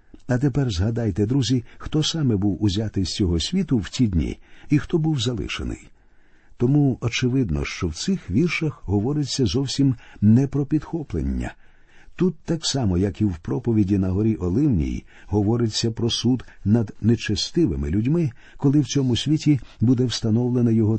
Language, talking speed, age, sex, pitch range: Ukrainian, 150 wpm, 50-69, male, 100-130 Hz